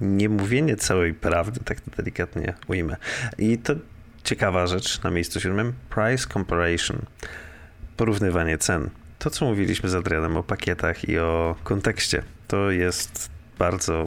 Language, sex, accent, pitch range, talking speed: Polish, male, native, 85-105 Hz, 130 wpm